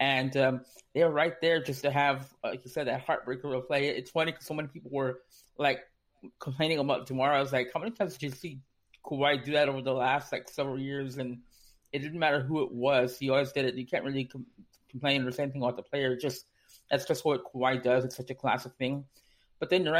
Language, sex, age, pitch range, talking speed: English, male, 20-39, 130-145 Hz, 245 wpm